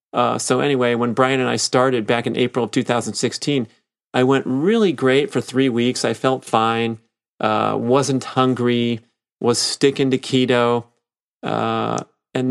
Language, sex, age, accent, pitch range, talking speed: English, male, 40-59, American, 105-120 Hz, 155 wpm